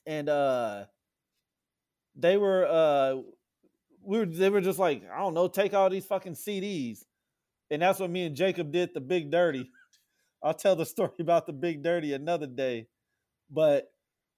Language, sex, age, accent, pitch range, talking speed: English, male, 30-49, American, 165-210 Hz, 170 wpm